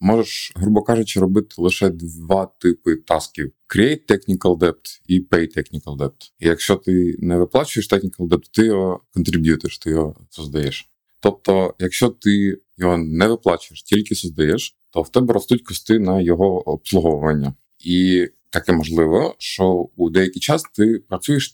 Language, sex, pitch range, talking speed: Ukrainian, male, 85-105 Hz, 150 wpm